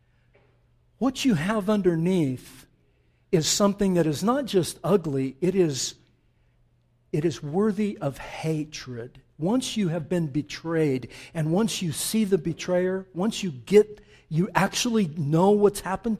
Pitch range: 155-205 Hz